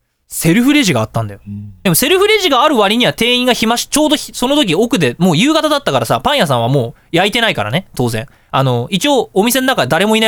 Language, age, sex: Japanese, 20-39, male